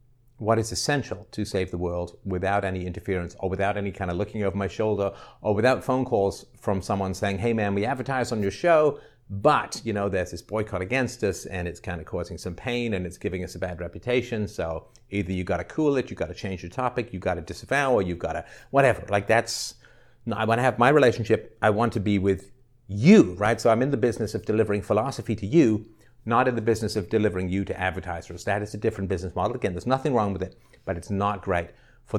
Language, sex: English, male